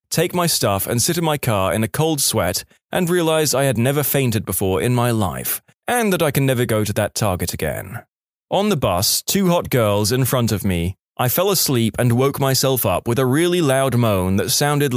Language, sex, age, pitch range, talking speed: English, male, 20-39, 110-155 Hz, 225 wpm